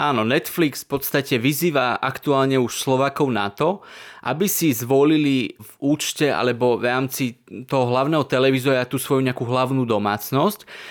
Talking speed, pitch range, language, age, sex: 145 wpm, 120-135 Hz, Slovak, 20-39, male